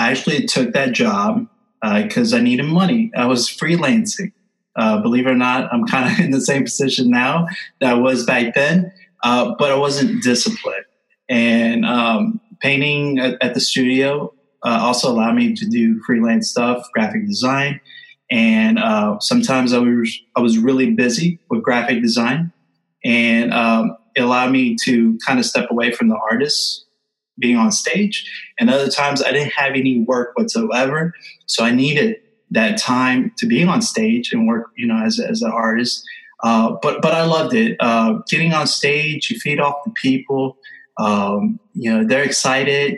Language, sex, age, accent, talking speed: English, male, 20-39, American, 175 wpm